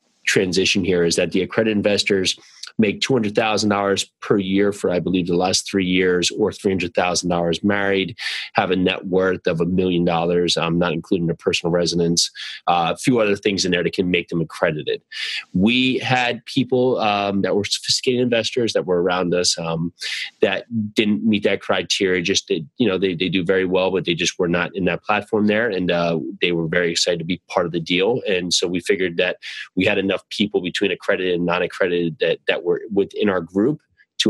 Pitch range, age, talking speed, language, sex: 85-100 Hz, 20-39, 200 wpm, English, male